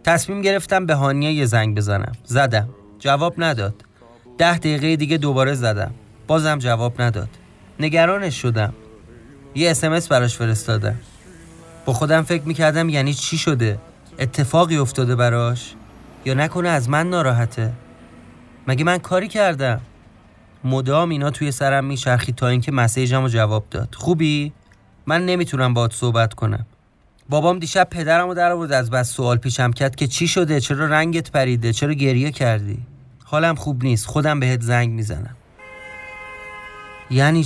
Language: Persian